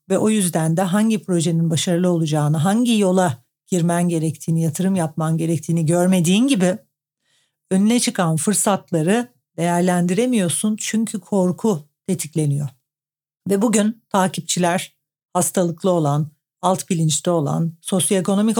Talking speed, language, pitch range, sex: 105 wpm, Turkish, 160-195 Hz, female